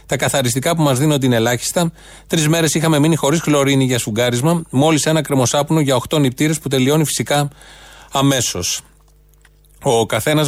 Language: Greek